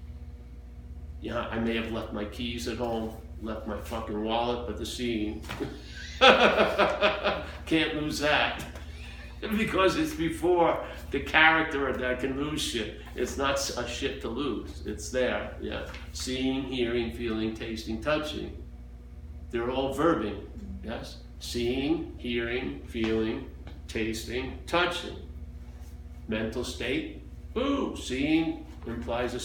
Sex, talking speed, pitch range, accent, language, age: male, 115 wpm, 80-135 Hz, American, English, 50-69